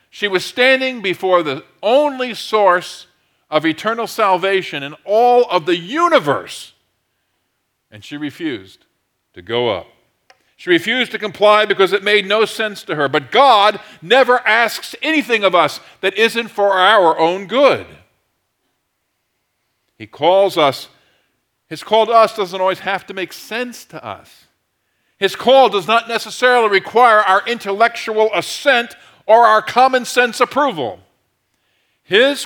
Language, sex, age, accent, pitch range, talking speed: English, male, 50-69, American, 150-220 Hz, 135 wpm